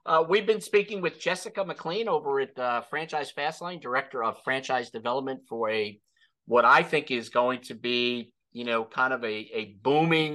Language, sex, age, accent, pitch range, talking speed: English, male, 50-69, American, 115-150 Hz, 185 wpm